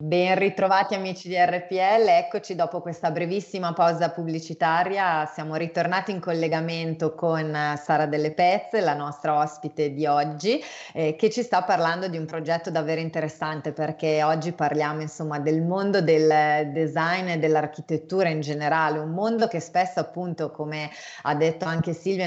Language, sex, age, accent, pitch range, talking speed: Italian, female, 30-49, native, 155-180 Hz, 155 wpm